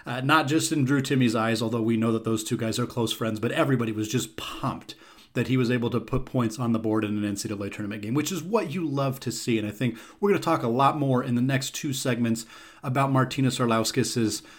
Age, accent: 30-49, American